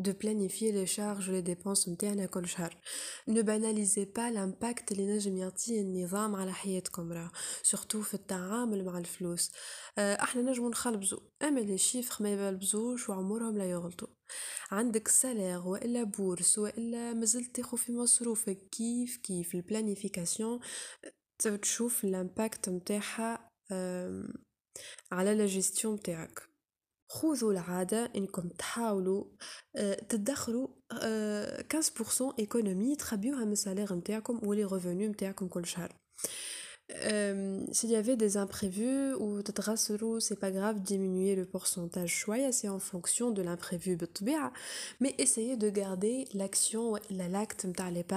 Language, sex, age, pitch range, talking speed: Arabic, female, 20-39, 185-230 Hz, 110 wpm